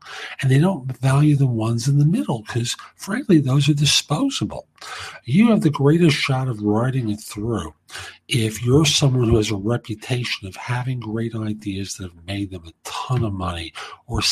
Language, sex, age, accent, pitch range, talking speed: English, male, 50-69, American, 100-135 Hz, 180 wpm